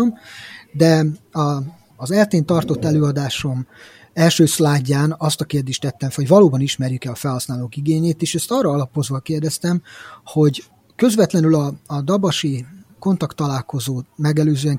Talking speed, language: 120 wpm, Hungarian